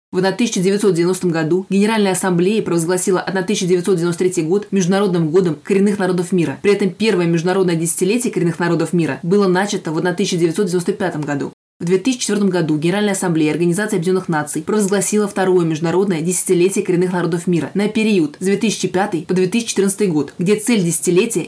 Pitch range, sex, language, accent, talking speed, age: 175-200 Hz, female, Russian, native, 140 wpm, 20-39